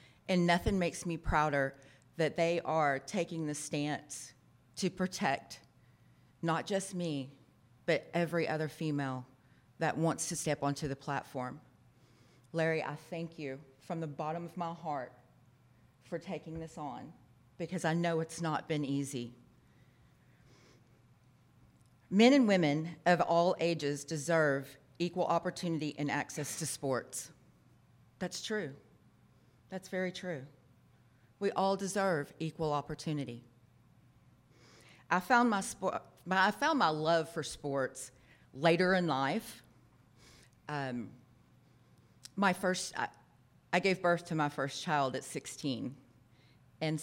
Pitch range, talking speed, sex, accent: 135-170 Hz, 125 wpm, female, American